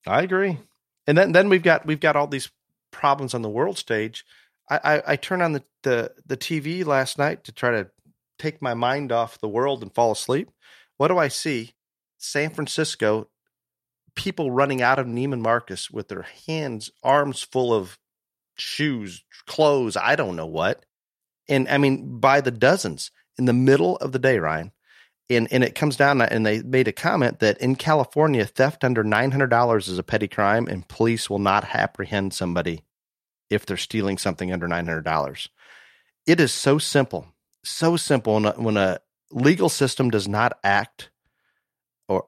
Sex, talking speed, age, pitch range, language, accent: male, 175 wpm, 40-59, 105-140 Hz, English, American